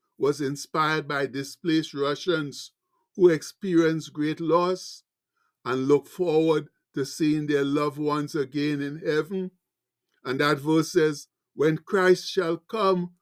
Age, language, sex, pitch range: 60-79, English, male, 150-190 Hz